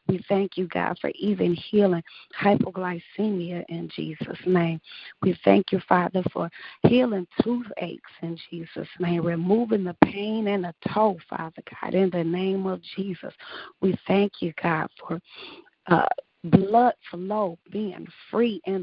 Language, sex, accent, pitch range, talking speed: English, female, American, 175-200 Hz, 145 wpm